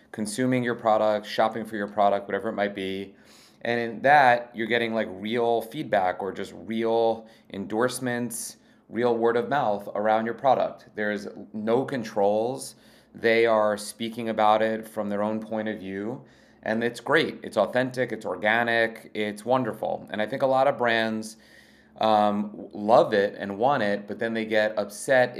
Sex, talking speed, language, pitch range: male, 170 wpm, English, 105-115 Hz